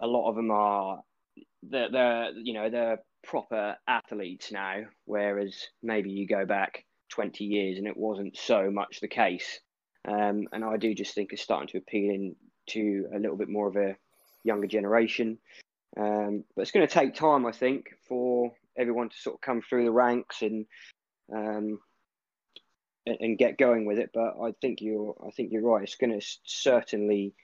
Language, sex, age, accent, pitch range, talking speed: English, male, 20-39, British, 105-120 Hz, 185 wpm